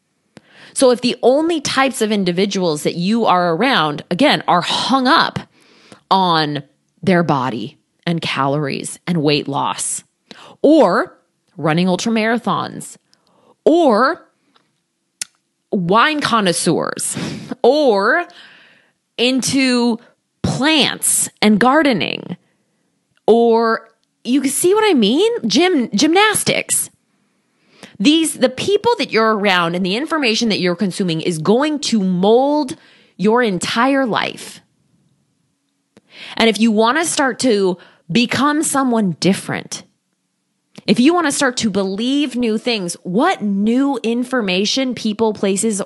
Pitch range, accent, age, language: 195-265 Hz, American, 20-39, English